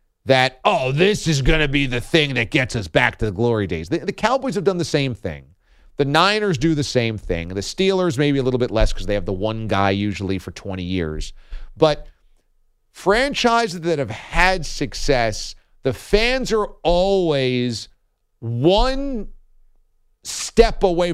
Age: 40-59